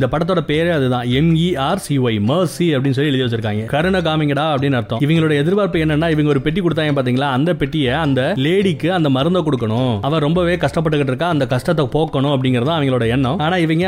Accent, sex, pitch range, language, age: native, male, 130-155 Hz, Tamil, 30-49